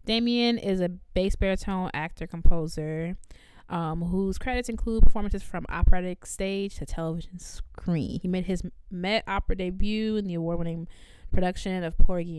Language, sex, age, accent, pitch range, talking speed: English, female, 20-39, American, 165-190 Hz, 150 wpm